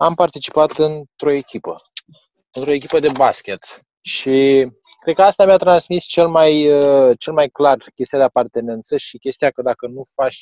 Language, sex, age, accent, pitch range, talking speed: Romanian, male, 20-39, native, 130-155 Hz, 155 wpm